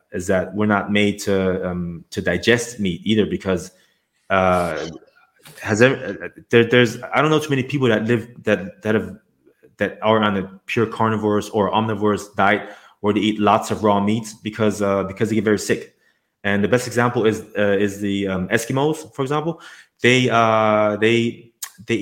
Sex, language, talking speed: male, English, 185 wpm